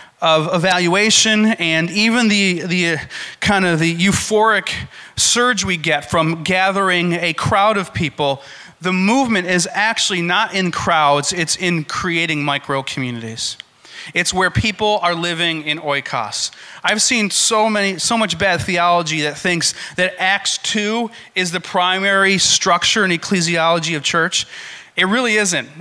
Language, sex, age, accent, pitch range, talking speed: English, male, 30-49, American, 150-190 Hz, 145 wpm